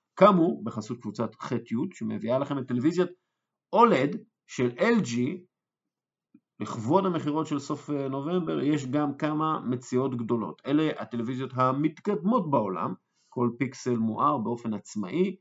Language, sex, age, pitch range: Hebrew, male, 50-69, 115-160 Hz